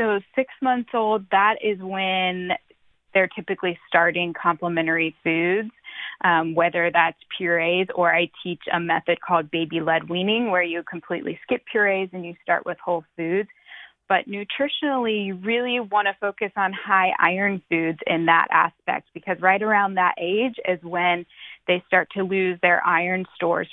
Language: English